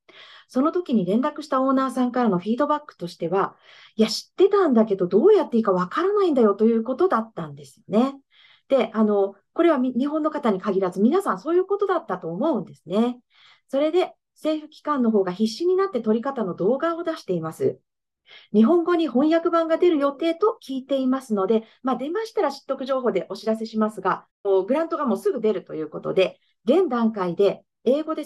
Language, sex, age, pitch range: Japanese, female, 40-59, 215-310 Hz